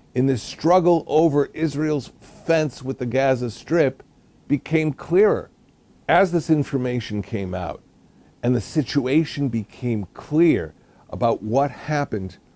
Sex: male